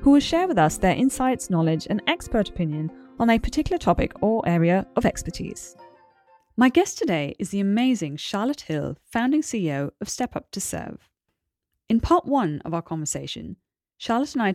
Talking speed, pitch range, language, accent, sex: 175 wpm, 165-235 Hz, English, British, female